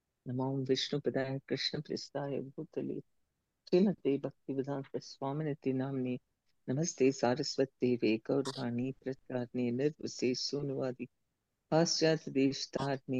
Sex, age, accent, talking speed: female, 50-69, Indian, 90 wpm